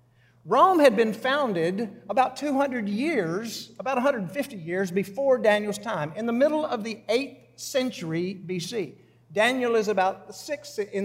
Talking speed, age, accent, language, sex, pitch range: 135 wpm, 50-69, American, English, male, 170-250 Hz